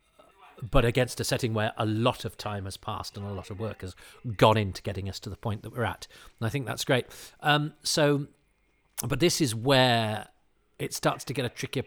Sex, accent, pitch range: male, British, 105-125 Hz